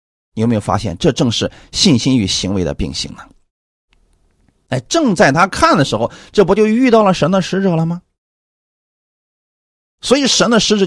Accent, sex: native, male